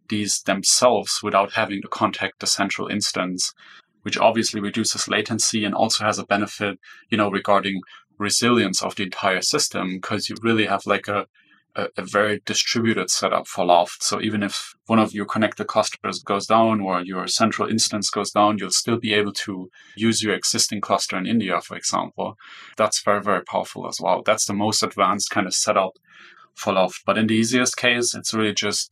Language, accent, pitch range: English, German, 100-110 Hz